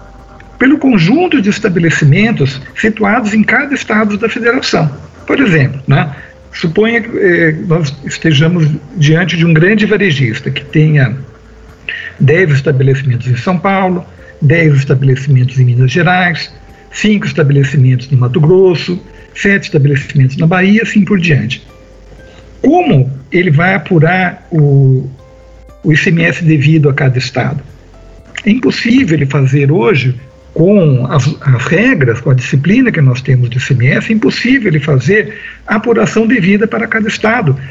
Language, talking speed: English, 135 wpm